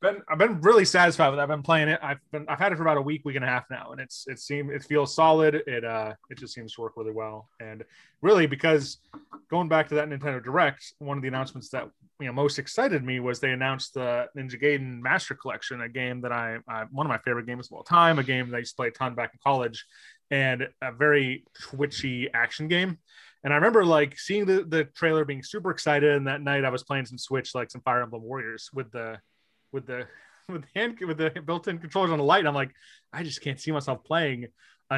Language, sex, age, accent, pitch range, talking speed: English, male, 20-39, American, 125-155 Hz, 250 wpm